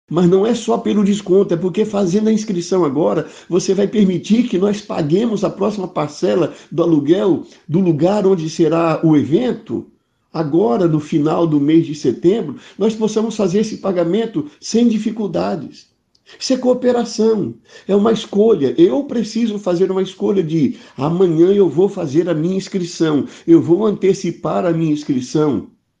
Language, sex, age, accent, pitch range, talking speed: Portuguese, male, 60-79, Brazilian, 135-200 Hz, 155 wpm